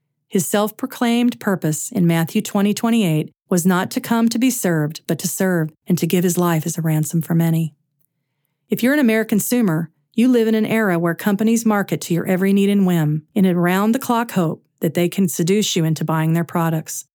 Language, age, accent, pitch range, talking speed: English, 40-59, American, 160-210 Hz, 205 wpm